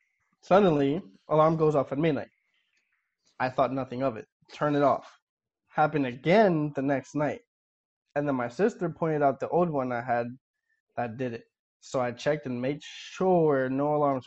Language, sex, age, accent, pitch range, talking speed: English, male, 20-39, American, 130-155 Hz, 170 wpm